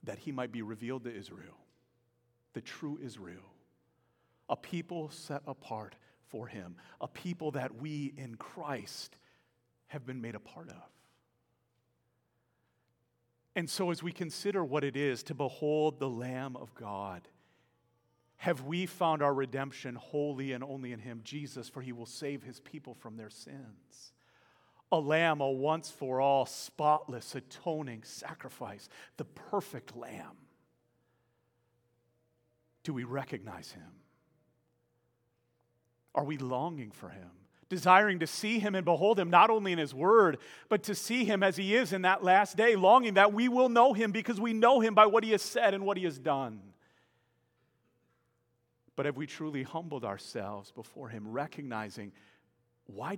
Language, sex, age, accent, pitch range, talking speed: English, male, 40-59, American, 120-165 Hz, 150 wpm